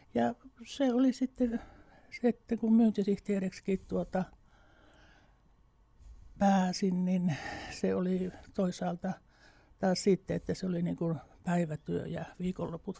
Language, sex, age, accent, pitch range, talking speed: Finnish, male, 60-79, native, 170-195 Hz, 105 wpm